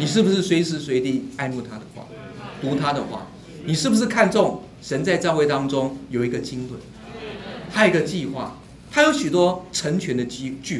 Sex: male